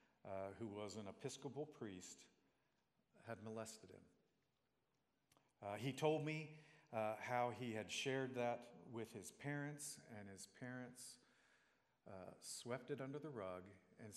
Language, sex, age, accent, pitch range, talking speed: English, male, 50-69, American, 105-135 Hz, 135 wpm